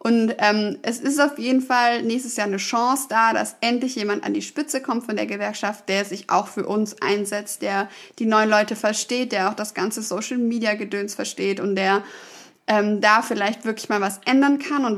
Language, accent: German, German